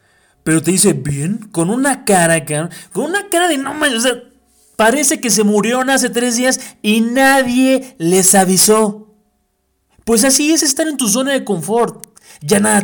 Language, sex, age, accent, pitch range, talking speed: English, male, 30-49, Mexican, 150-230 Hz, 175 wpm